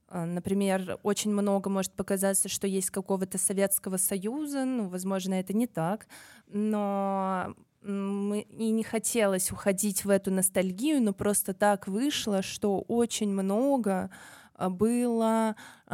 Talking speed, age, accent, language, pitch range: 120 wpm, 20-39, native, Russian, 185-210 Hz